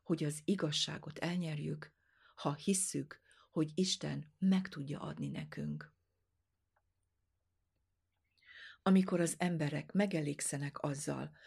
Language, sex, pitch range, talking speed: Hungarian, female, 110-175 Hz, 90 wpm